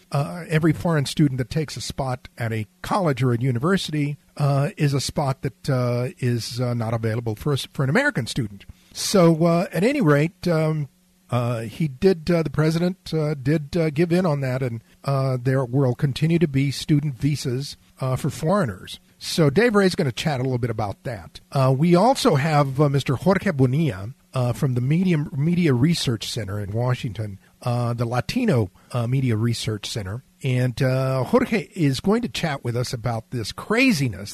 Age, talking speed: 50-69, 190 wpm